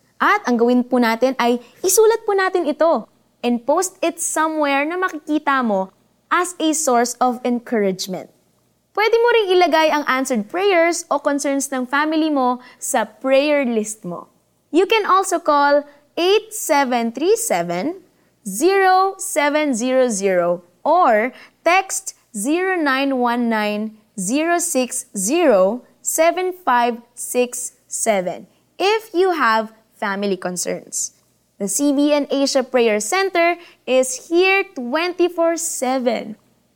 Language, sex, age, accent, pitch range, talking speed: Filipino, female, 20-39, native, 225-325 Hz, 95 wpm